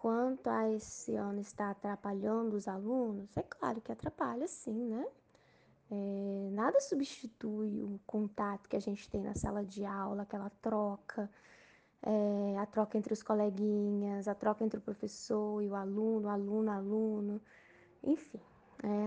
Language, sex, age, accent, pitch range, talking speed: Portuguese, female, 10-29, Brazilian, 205-240 Hz, 150 wpm